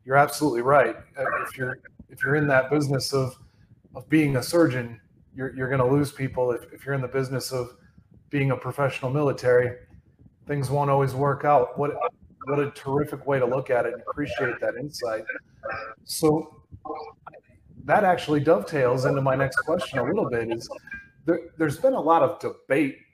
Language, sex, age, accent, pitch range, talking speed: English, male, 30-49, American, 130-165 Hz, 175 wpm